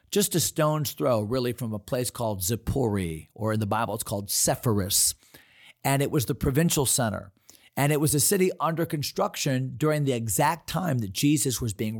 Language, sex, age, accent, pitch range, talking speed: English, male, 40-59, American, 115-155 Hz, 190 wpm